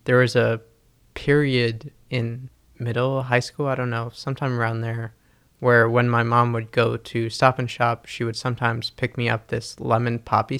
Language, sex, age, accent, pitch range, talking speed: English, male, 20-39, American, 115-130 Hz, 185 wpm